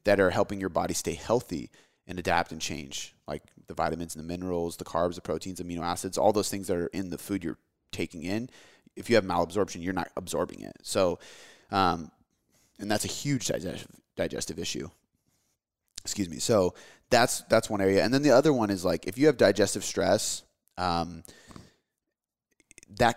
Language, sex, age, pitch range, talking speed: English, male, 30-49, 90-110 Hz, 185 wpm